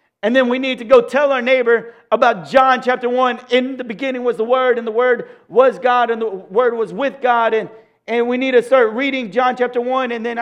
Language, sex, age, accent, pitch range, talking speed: English, male, 40-59, American, 160-250 Hz, 240 wpm